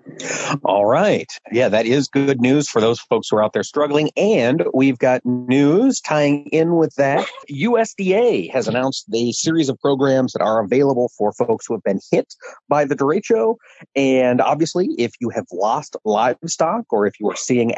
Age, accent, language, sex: 40-59, American, English, male